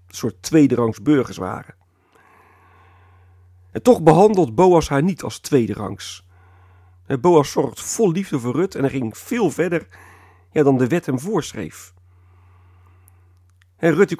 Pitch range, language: 90-150 Hz, Dutch